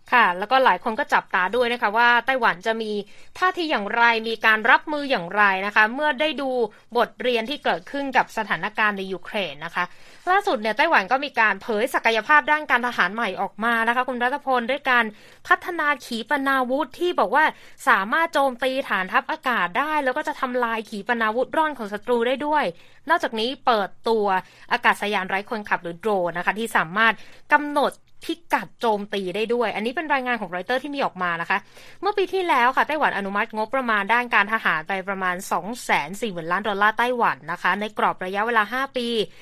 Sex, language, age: female, Thai, 20-39